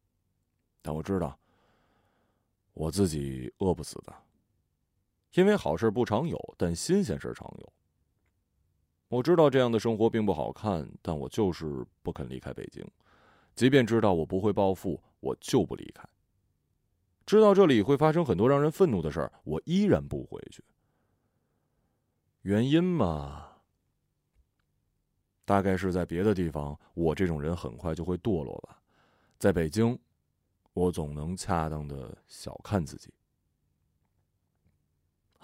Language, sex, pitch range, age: Chinese, male, 85-120 Hz, 30-49